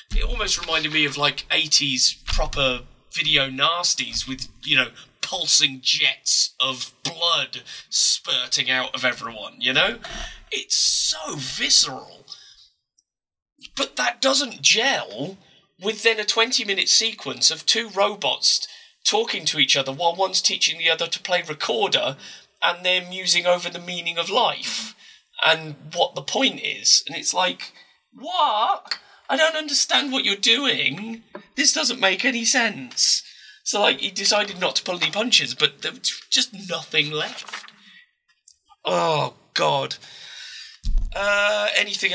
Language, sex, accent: English, male, British